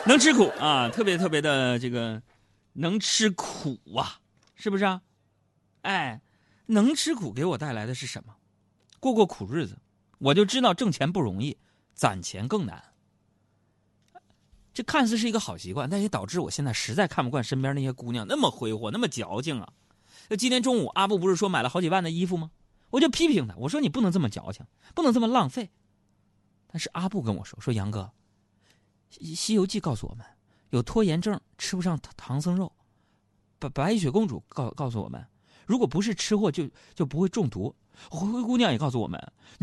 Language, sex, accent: Chinese, male, native